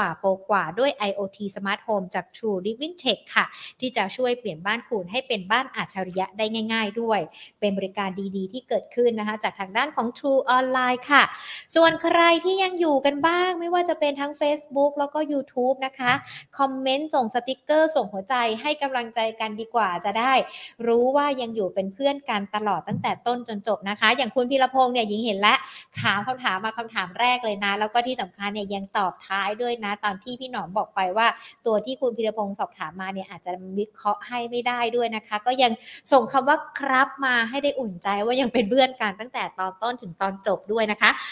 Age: 60-79